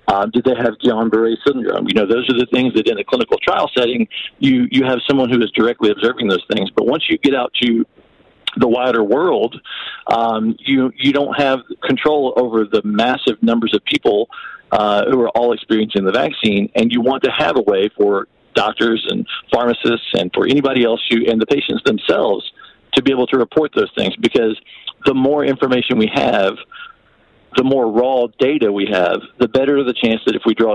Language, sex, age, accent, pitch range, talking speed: English, male, 50-69, American, 115-145 Hz, 200 wpm